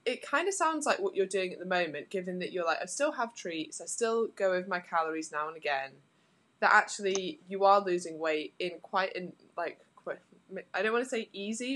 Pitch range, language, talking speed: 155-215 Hz, English, 225 wpm